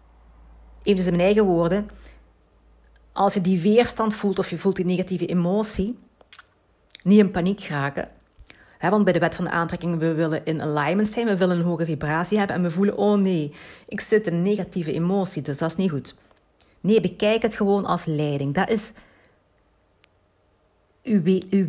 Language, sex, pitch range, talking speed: Dutch, female, 150-195 Hz, 175 wpm